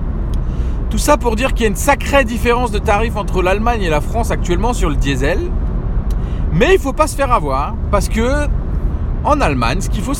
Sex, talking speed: male, 210 wpm